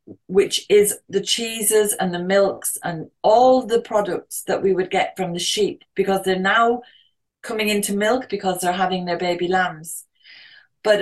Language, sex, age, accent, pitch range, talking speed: English, female, 30-49, British, 185-215 Hz, 170 wpm